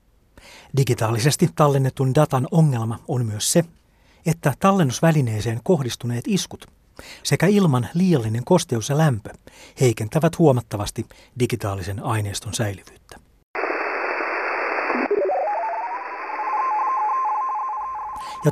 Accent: native